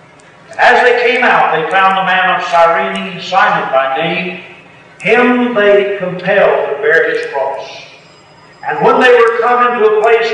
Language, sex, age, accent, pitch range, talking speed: English, male, 50-69, American, 175-250 Hz, 170 wpm